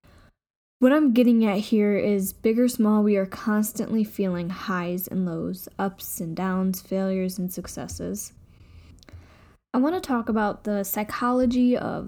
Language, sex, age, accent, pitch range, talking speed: English, female, 10-29, American, 190-225 Hz, 150 wpm